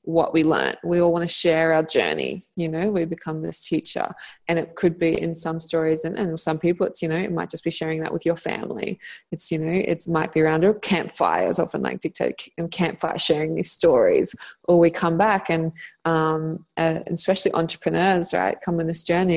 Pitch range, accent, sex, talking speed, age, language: 165-200 Hz, Australian, female, 215 wpm, 20-39, English